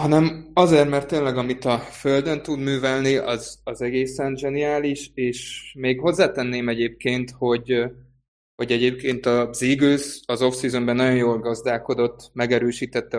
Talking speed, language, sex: 125 wpm, Hungarian, male